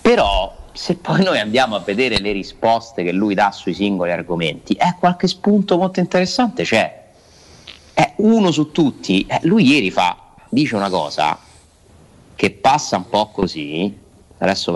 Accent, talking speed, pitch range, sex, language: native, 155 wpm, 100-130 Hz, male, Italian